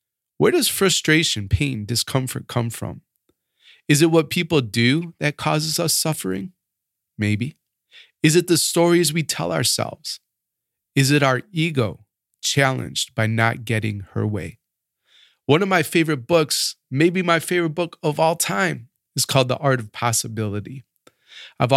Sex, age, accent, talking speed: male, 30-49, American, 145 wpm